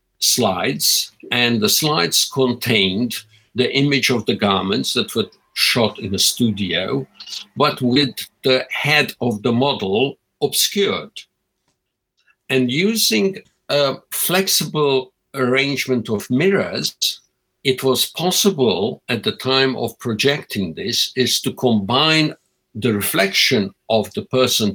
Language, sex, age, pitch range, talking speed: English, male, 60-79, 105-140 Hz, 115 wpm